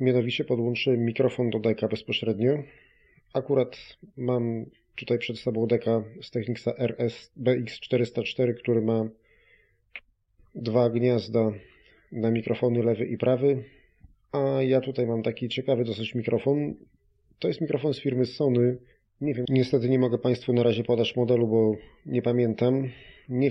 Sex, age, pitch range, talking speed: male, 30-49, 110-125 Hz, 135 wpm